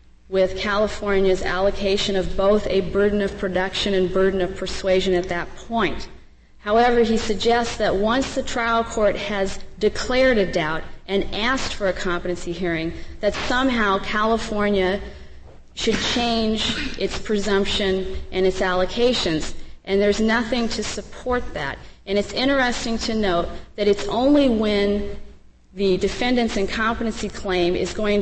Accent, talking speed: American, 140 wpm